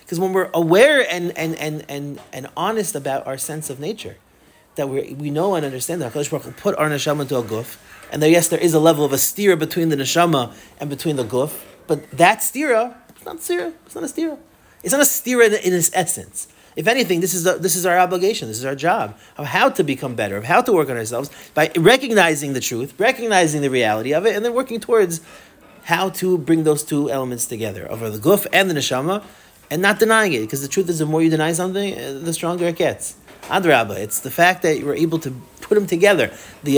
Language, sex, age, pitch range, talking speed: English, male, 30-49, 140-195 Hz, 235 wpm